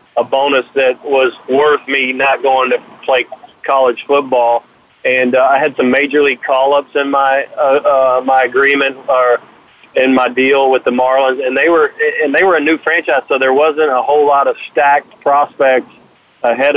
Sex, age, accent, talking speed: male, 40-59, American, 185 wpm